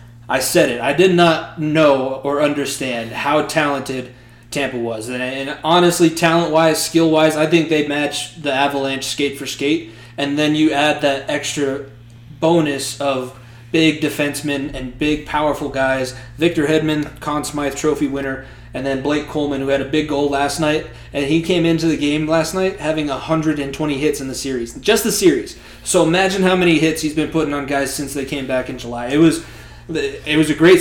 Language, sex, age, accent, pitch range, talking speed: English, male, 20-39, American, 135-160 Hz, 190 wpm